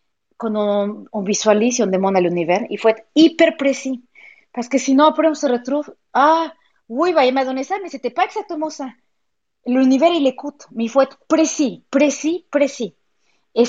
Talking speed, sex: 200 wpm, female